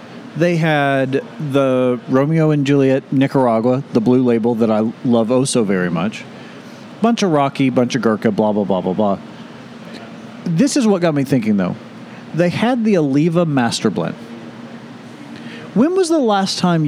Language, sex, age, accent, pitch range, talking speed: English, male, 40-59, American, 135-200 Hz, 165 wpm